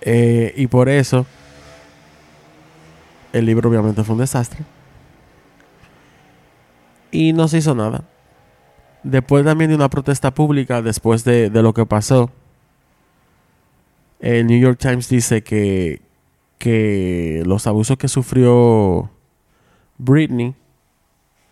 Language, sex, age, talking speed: Spanish, male, 20-39, 110 wpm